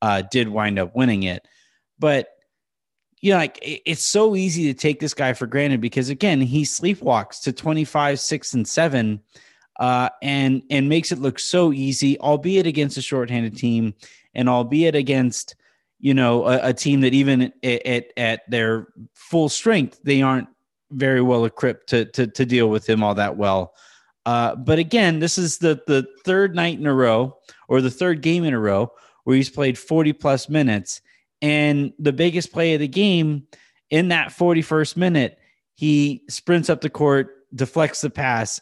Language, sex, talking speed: English, male, 180 wpm